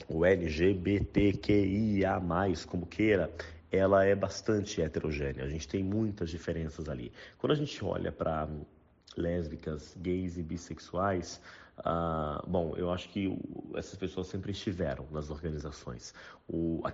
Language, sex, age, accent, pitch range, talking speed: Portuguese, male, 40-59, Brazilian, 85-100 Hz, 125 wpm